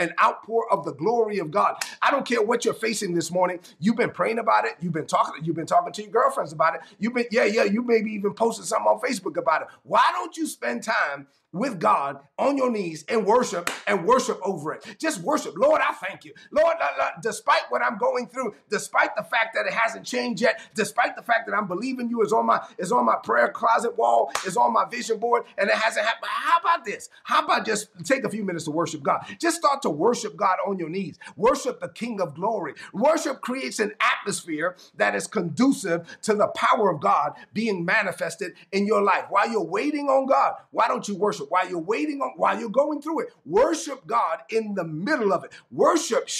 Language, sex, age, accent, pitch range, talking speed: English, male, 30-49, American, 195-265 Hz, 220 wpm